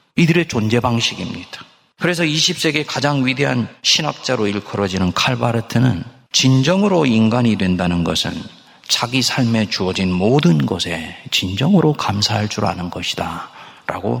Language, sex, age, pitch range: Korean, male, 40-59, 95-130 Hz